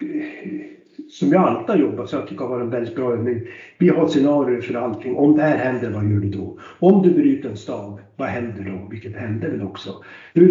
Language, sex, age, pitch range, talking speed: Swedish, male, 60-79, 115-175 Hz, 235 wpm